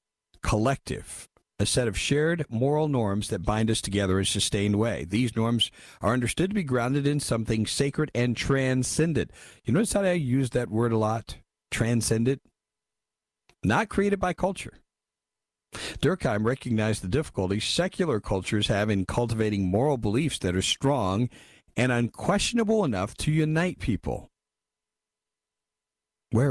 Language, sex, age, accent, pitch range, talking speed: English, male, 50-69, American, 90-135 Hz, 140 wpm